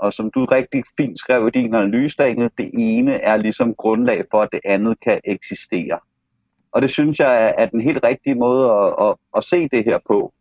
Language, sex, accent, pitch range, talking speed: Danish, male, native, 110-140 Hz, 200 wpm